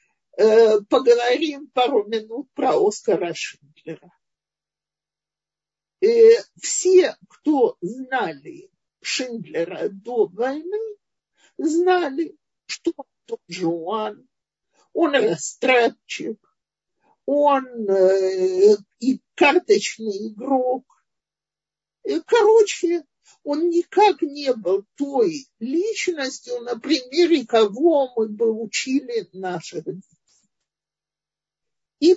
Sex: male